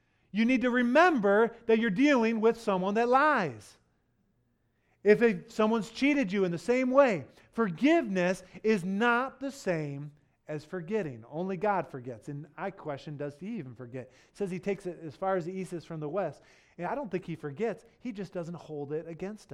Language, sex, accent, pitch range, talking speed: English, male, American, 145-190 Hz, 190 wpm